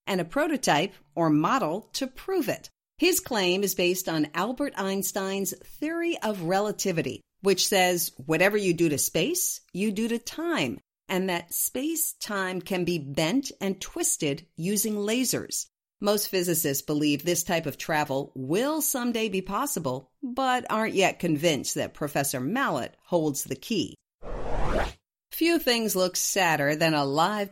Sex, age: female, 50-69